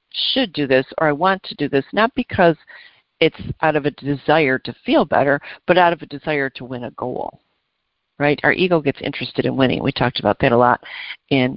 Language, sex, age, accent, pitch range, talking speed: English, female, 50-69, American, 135-170 Hz, 220 wpm